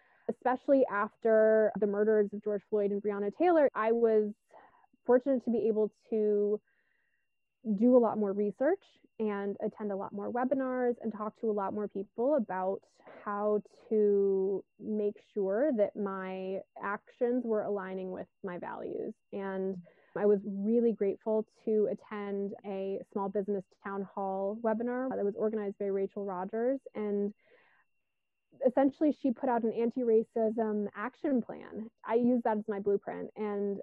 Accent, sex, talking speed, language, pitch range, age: American, female, 145 wpm, English, 205-245 Hz, 20-39